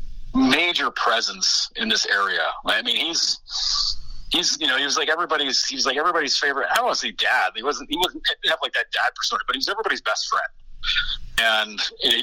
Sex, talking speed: male, 210 wpm